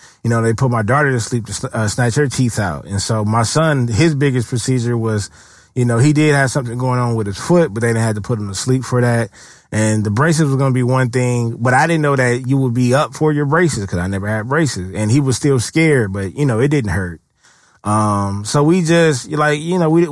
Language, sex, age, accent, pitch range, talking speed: English, male, 20-39, American, 110-150 Hz, 265 wpm